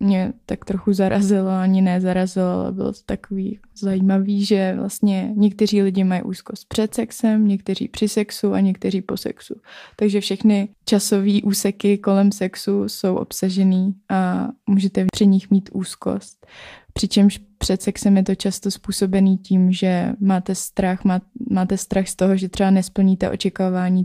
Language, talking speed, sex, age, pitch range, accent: Czech, 145 wpm, female, 20-39, 185-205 Hz, native